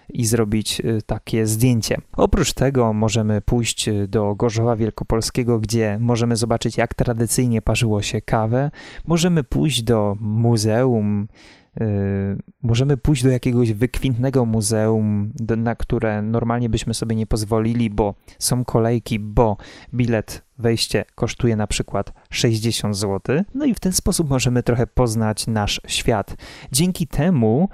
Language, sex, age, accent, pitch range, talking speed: Polish, male, 20-39, native, 110-130 Hz, 130 wpm